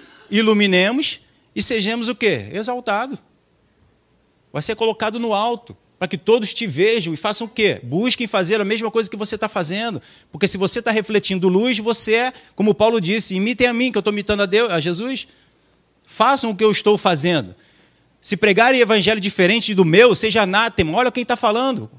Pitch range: 160-220 Hz